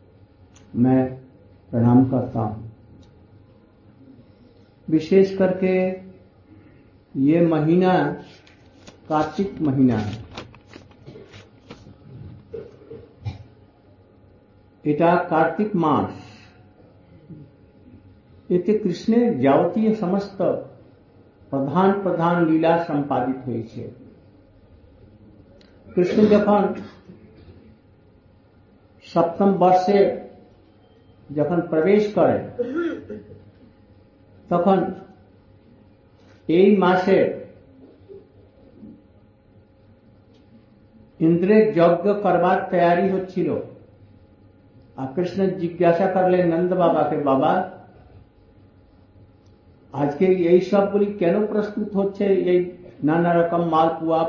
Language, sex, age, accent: Hindi, male, 60-79, native